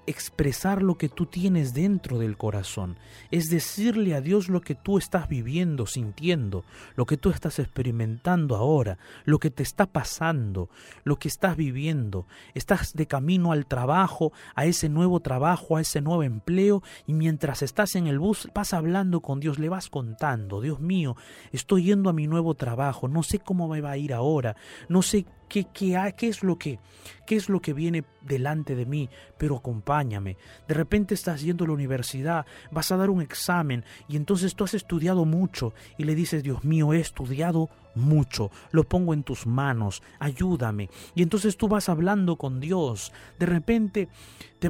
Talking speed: 175 wpm